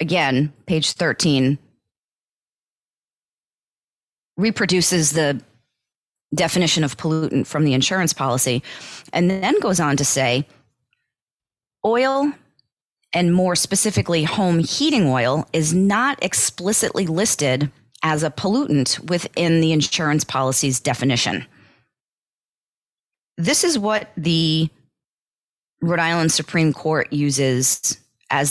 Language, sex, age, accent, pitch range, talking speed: English, female, 30-49, American, 140-180 Hz, 100 wpm